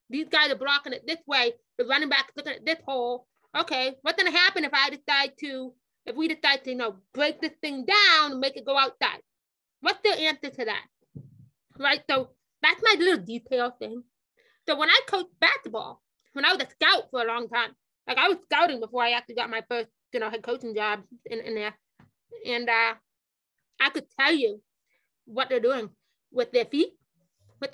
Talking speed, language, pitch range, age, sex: 210 wpm, English, 245-355 Hz, 30-49, female